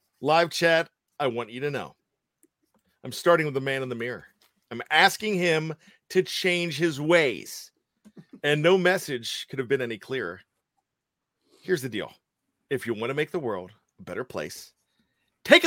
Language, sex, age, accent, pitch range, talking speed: English, male, 40-59, American, 135-215 Hz, 170 wpm